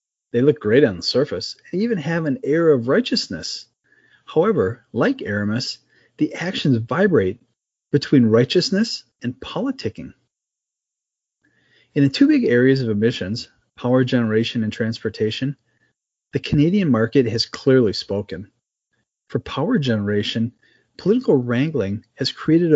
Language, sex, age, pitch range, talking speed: English, male, 30-49, 115-150 Hz, 125 wpm